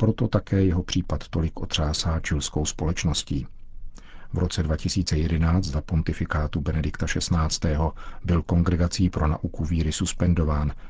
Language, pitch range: Czech, 80-105 Hz